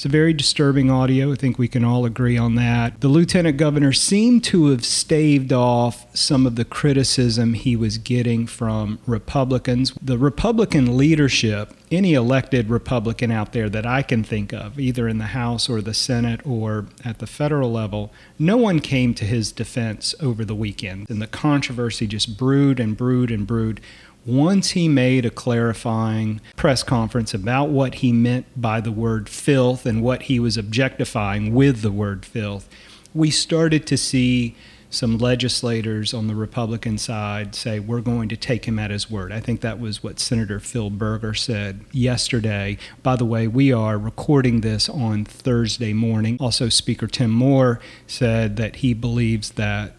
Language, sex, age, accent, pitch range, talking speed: English, male, 40-59, American, 110-130 Hz, 175 wpm